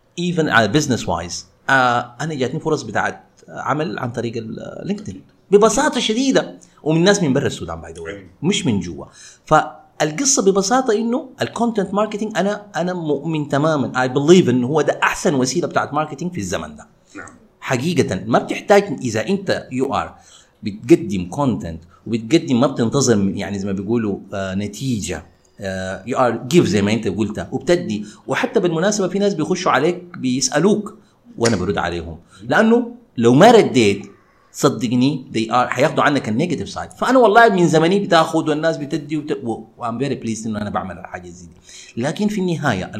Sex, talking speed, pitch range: male, 155 wpm, 105-180 Hz